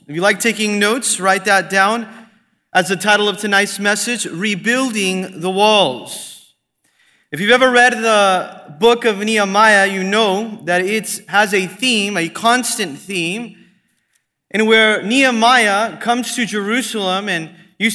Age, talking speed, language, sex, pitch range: 30-49, 145 wpm, English, male, 200-240 Hz